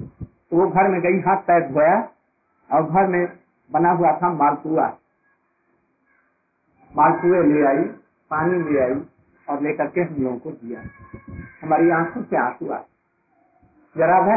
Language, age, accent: Hindi, 50-69, native